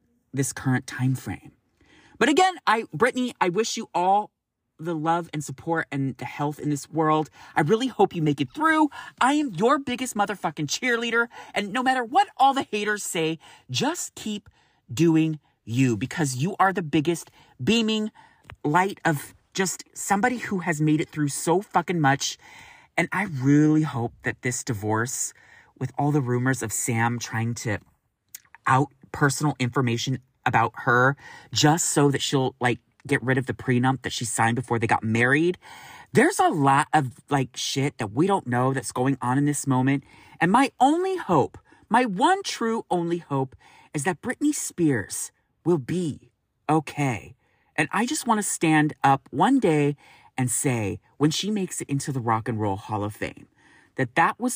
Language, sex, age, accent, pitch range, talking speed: English, male, 30-49, American, 130-200 Hz, 175 wpm